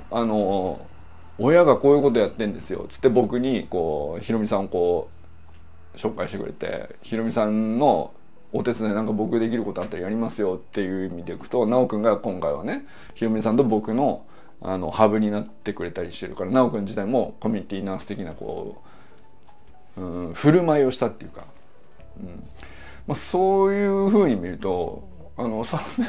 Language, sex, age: Japanese, male, 20-39